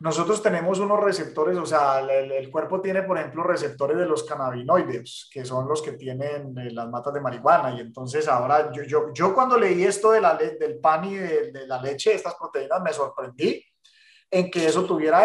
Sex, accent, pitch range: male, Colombian, 155-195 Hz